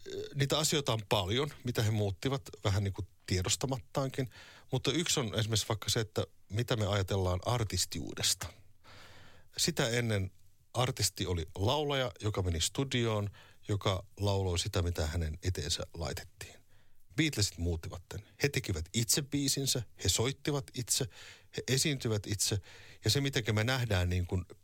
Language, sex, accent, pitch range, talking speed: Finnish, male, native, 95-125 Hz, 135 wpm